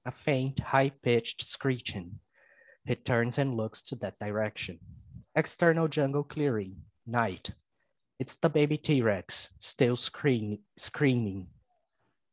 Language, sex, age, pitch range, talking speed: English, male, 20-39, 105-130 Hz, 100 wpm